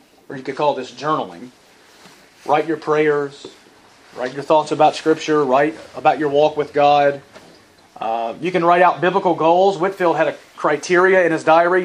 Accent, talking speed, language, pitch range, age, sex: American, 170 wpm, English, 145-185 Hz, 40-59, male